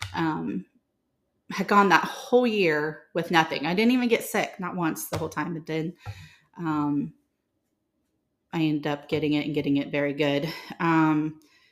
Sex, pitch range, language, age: female, 150-175 Hz, English, 30-49